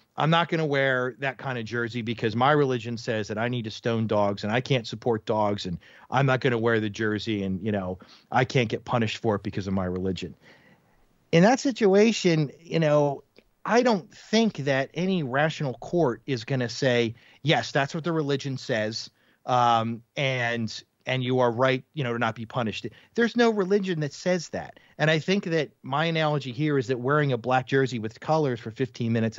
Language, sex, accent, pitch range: English, male, American, 115-150 Hz